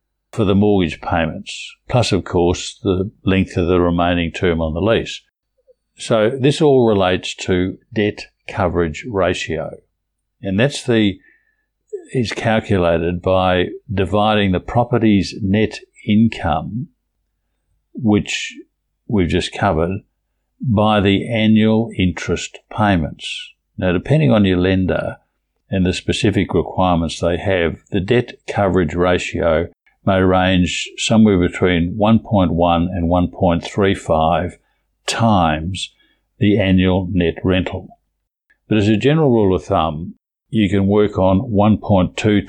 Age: 60-79